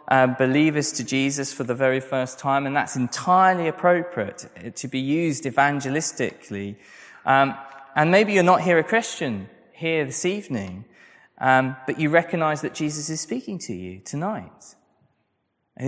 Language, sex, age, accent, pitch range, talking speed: English, male, 20-39, British, 125-180 Hz, 150 wpm